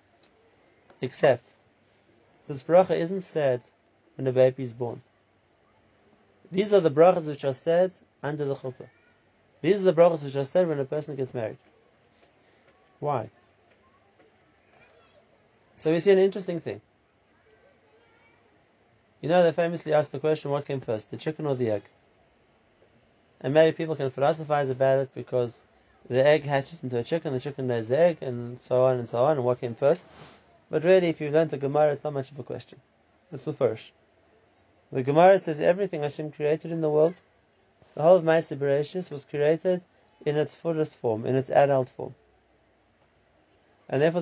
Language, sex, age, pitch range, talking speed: English, male, 30-49, 130-160 Hz, 170 wpm